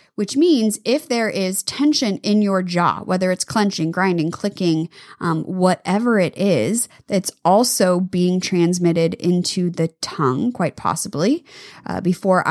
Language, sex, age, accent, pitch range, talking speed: English, female, 20-39, American, 175-225 Hz, 140 wpm